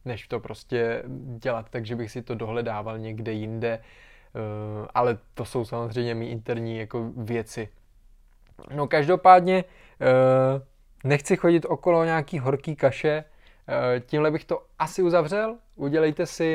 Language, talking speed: Czech, 125 wpm